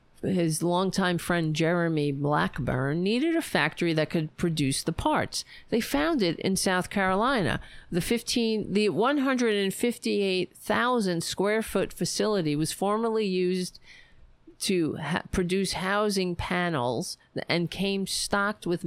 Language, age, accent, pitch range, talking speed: English, 50-69, American, 160-200 Hz, 120 wpm